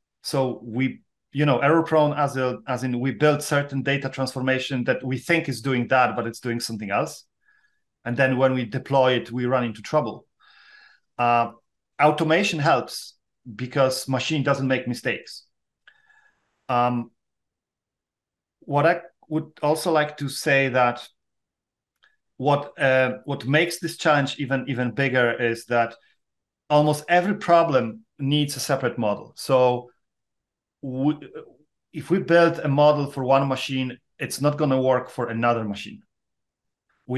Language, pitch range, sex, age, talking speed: English, 125-150 Hz, male, 40-59, 140 wpm